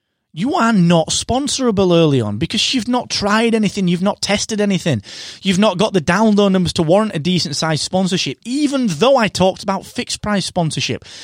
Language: English